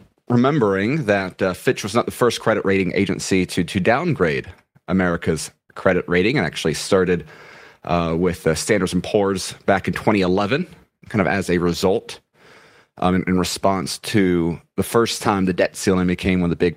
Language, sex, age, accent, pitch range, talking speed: English, male, 30-49, American, 85-100 Hz, 180 wpm